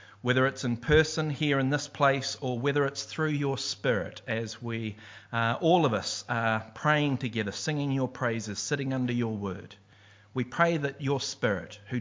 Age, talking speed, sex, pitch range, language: 40-59, 180 wpm, male, 110-145 Hz, English